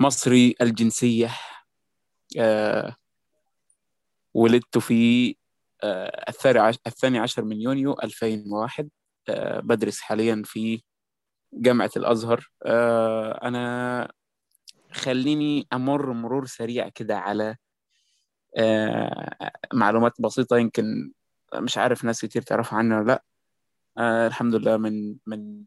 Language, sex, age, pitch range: Arabic, male, 20-39, 110-125 Hz